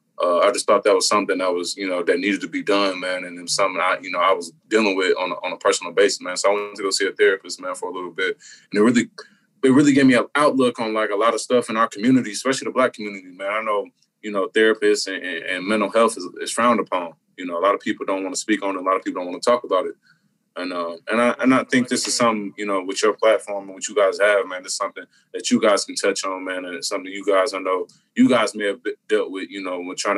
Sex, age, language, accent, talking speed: male, 20-39, English, American, 305 wpm